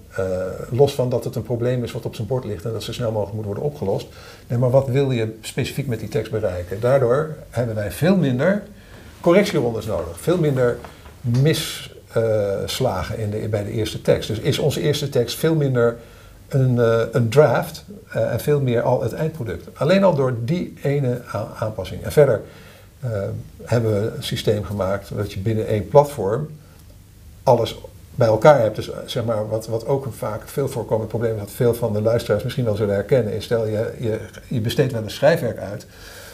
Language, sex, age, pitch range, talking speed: Dutch, male, 50-69, 105-135 Hz, 195 wpm